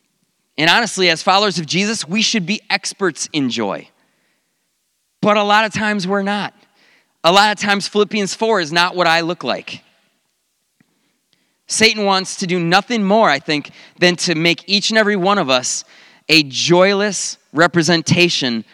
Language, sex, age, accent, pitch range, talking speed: English, male, 30-49, American, 160-200 Hz, 165 wpm